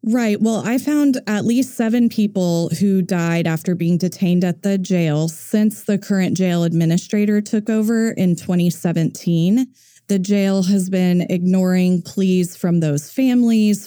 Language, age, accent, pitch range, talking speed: English, 20-39, American, 160-190 Hz, 145 wpm